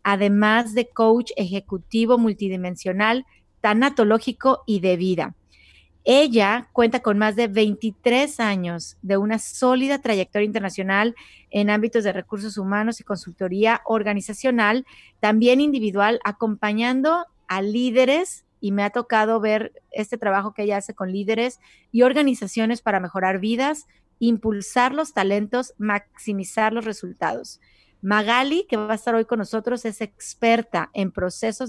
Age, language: 40-59, Spanish